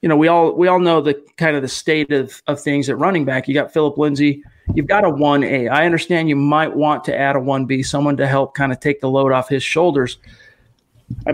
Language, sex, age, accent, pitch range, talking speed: English, male, 40-59, American, 140-165 Hz, 260 wpm